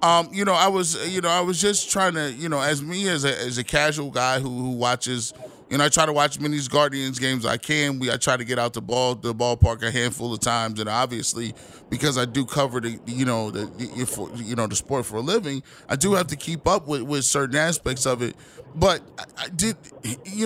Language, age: English, 20-39